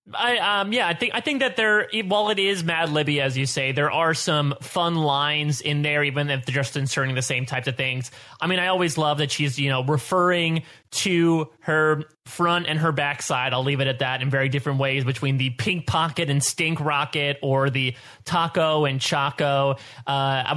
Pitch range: 135-175 Hz